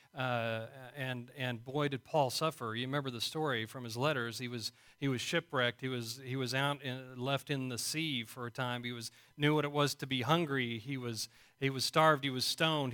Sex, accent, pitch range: male, American, 120-165 Hz